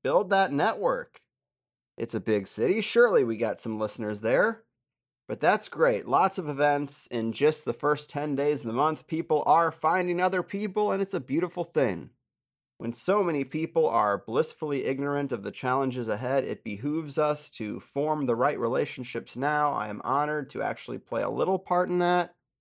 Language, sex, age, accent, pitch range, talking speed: English, male, 30-49, American, 125-175 Hz, 185 wpm